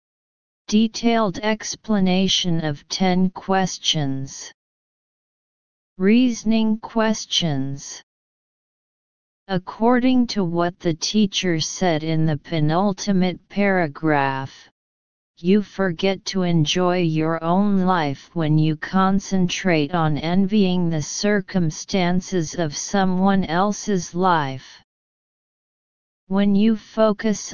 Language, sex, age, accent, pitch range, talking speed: English, female, 40-59, American, 160-195 Hz, 85 wpm